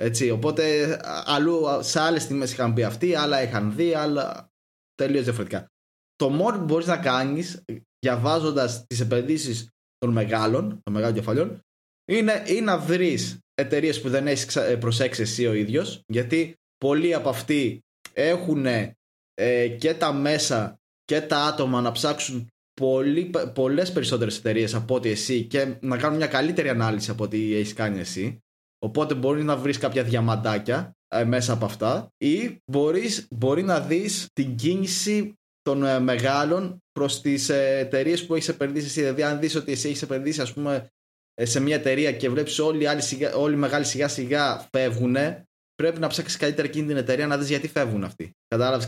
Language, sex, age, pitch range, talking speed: Greek, male, 20-39, 115-155 Hz, 160 wpm